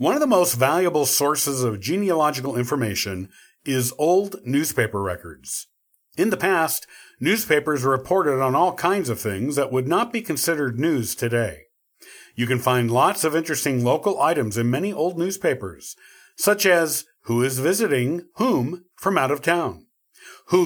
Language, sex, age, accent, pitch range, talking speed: English, male, 50-69, American, 125-185 Hz, 155 wpm